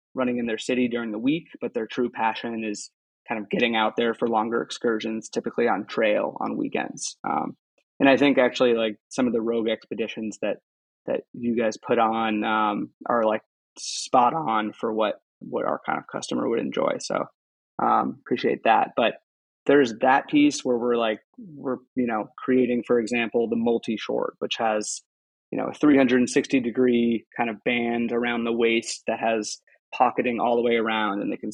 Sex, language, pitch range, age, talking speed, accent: male, English, 115-125 Hz, 20-39, 185 wpm, American